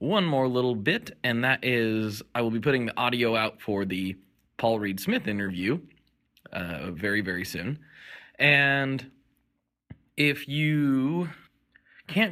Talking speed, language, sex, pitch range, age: 135 wpm, English, male, 105-145 Hz, 20-39